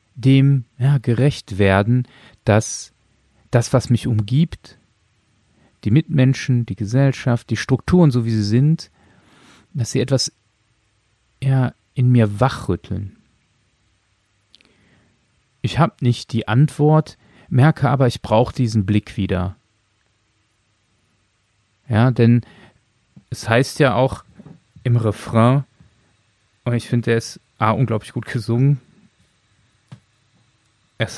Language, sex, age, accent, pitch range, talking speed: German, male, 40-59, German, 110-130 Hz, 105 wpm